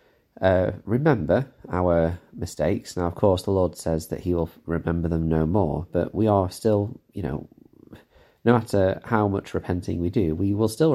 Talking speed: 180 wpm